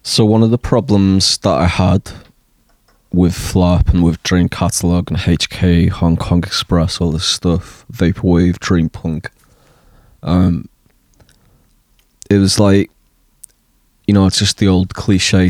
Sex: male